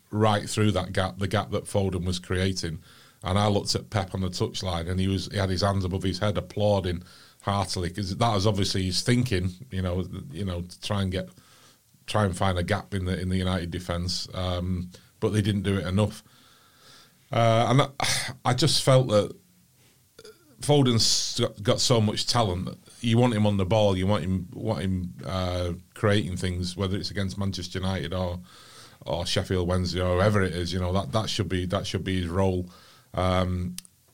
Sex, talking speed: male, 200 wpm